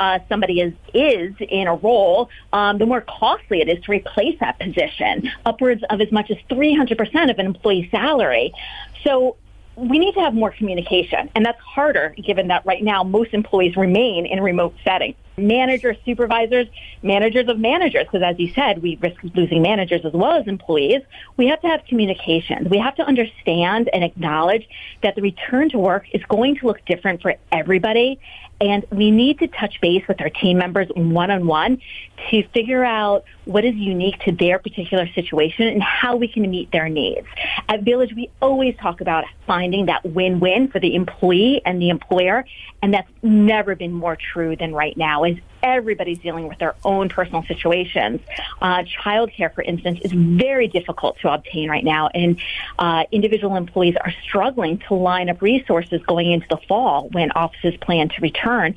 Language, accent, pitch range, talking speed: English, American, 175-225 Hz, 180 wpm